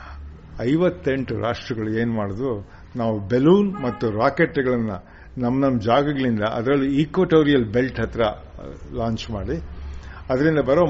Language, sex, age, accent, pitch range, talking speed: Kannada, male, 60-79, native, 105-135 Hz, 100 wpm